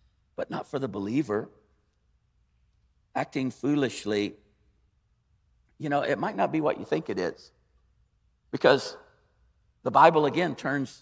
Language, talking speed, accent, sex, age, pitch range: English, 125 wpm, American, male, 50-69, 120-185 Hz